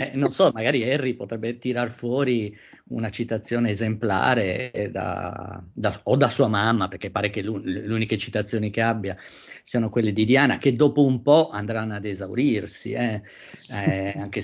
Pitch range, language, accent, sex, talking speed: 100-120 Hz, Italian, native, male, 165 wpm